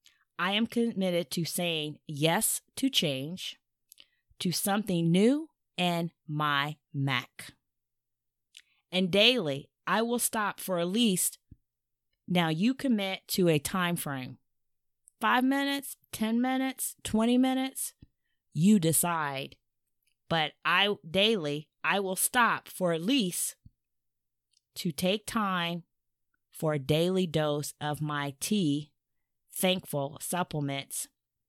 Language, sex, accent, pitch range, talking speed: English, female, American, 145-205 Hz, 110 wpm